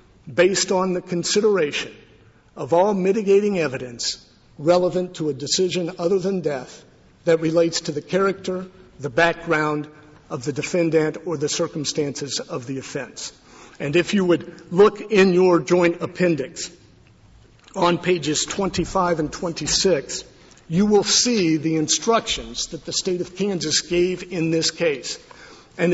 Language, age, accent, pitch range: English, 50-69, American, 155-190 Hz